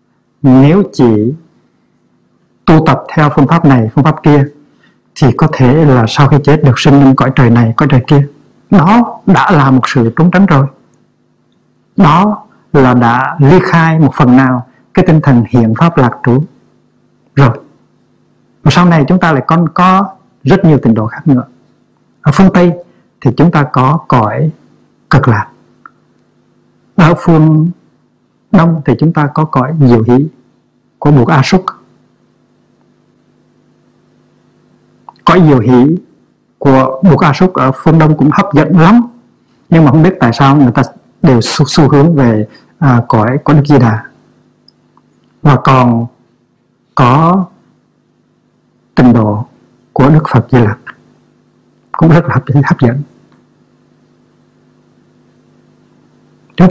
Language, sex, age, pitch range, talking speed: Vietnamese, male, 60-79, 125-165 Hz, 145 wpm